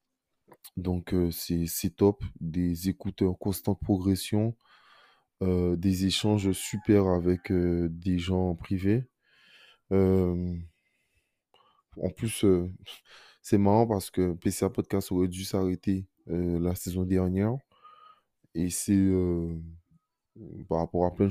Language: French